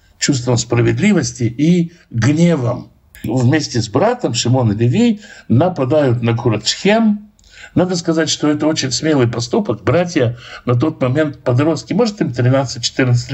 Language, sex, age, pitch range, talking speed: Russian, male, 60-79, 120-160 Hz, 125 wpm